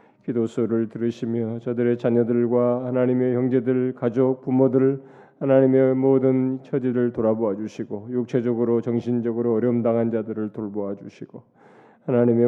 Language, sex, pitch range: Korean, male, 115-135 Hz